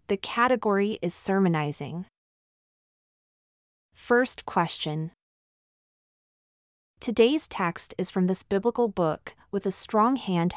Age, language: 30-49, English